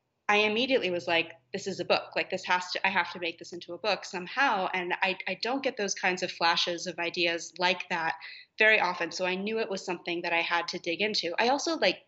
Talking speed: 255 wpm